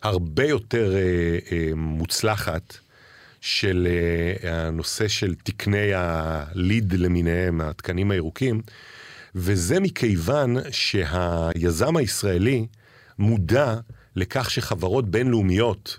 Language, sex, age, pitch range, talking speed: Hebrew, male, 50-69, 95-125 Hz, 85 wpm